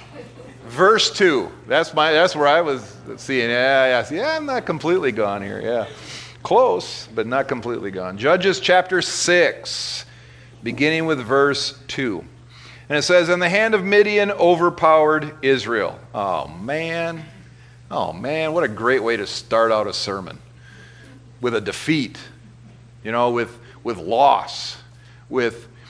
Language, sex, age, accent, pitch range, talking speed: English, male, 50-69, American, 125-175 Hz, 145 wpm